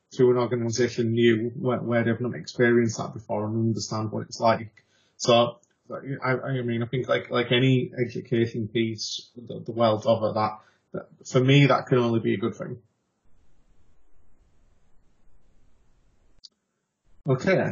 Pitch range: 115-130 Hz